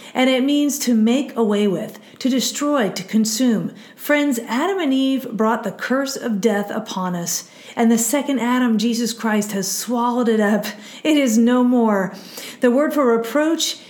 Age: 40-59